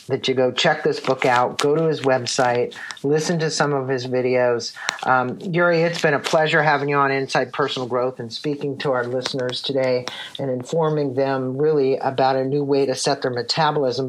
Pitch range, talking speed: 130-155 Hz, 200 wpm